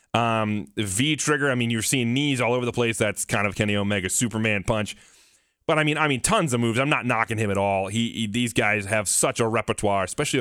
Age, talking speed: 30-49, 240 wpm